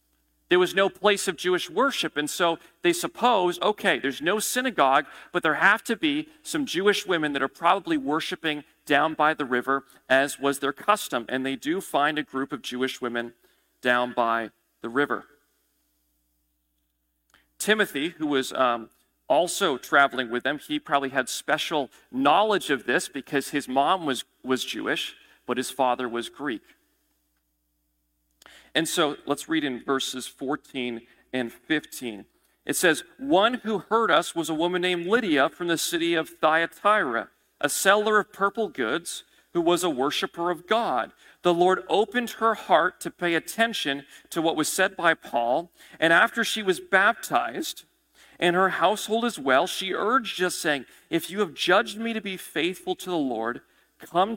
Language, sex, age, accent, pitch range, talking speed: English, male, 40-59, American, 135-195 Hz, 165 wpm